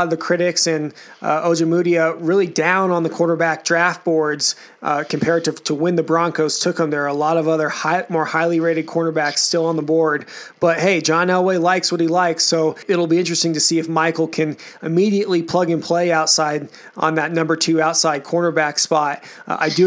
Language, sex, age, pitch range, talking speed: English, male, 20-39, 160-175 Hz, 210 wpm